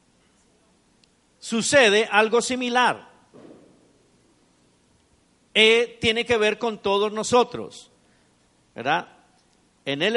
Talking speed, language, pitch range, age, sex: 75 wpm, Spanish, 165-230 Hz, 50-69, male